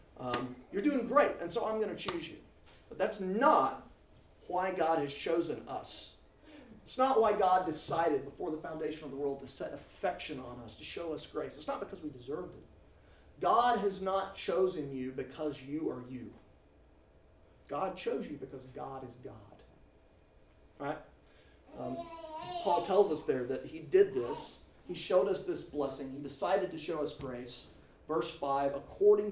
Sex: male